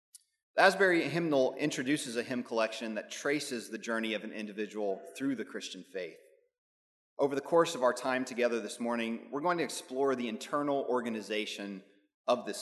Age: 30-49